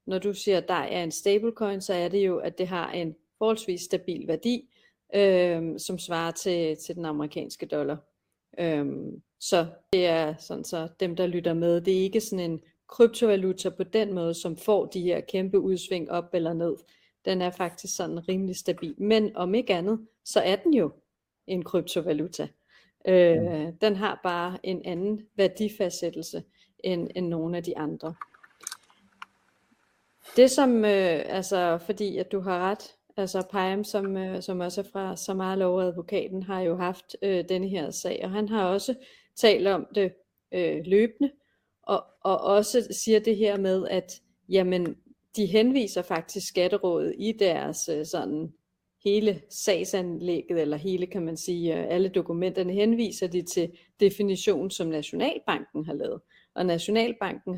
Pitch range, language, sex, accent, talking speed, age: 175-200 Hz, Danish, female, native, 165 wpm, 30-49